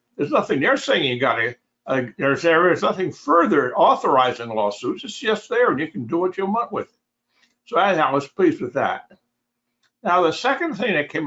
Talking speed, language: 210 wpm, English